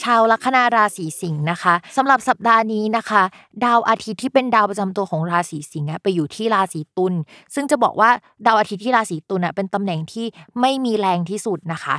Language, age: Thai, 20-39